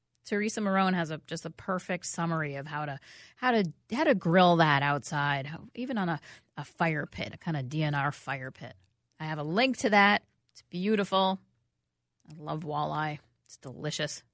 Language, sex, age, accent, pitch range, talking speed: English, female, 30-49, American, 150-220 Hz, 185 wpm